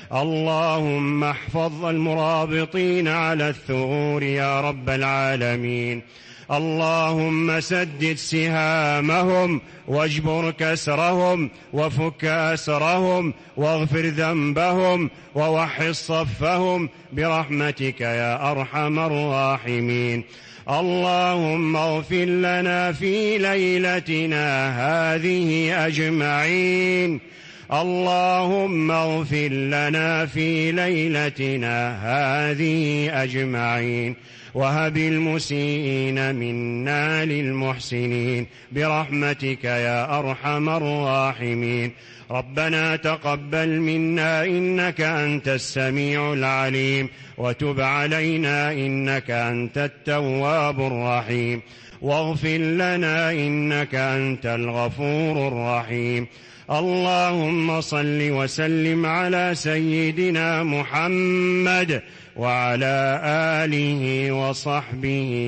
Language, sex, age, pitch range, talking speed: English, male, 40-59, 135-160 Hz, 65 wpm